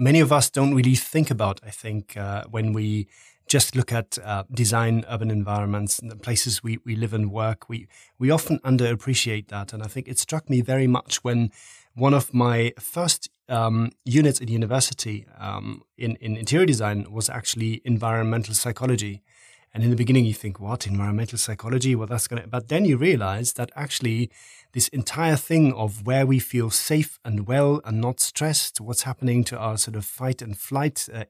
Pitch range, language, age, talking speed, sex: 110-135 Hz, English, 30-49, 190 wpm, male